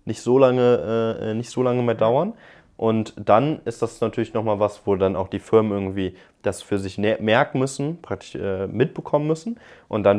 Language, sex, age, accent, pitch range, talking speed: German, male, 20-39, German, 95-115 Hz, 195 wpm